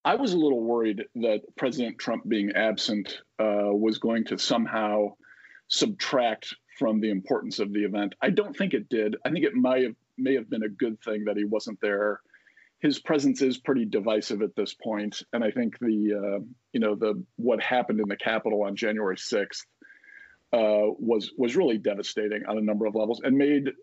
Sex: male